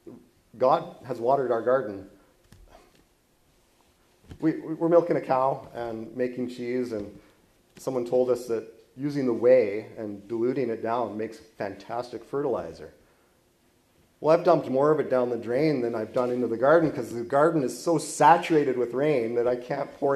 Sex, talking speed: male, 165 wpm